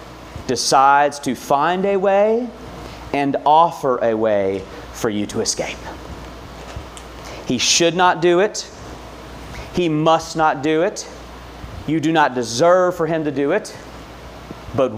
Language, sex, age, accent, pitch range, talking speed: English, male, 40-59, American, 110-160 Hz, 130 wpm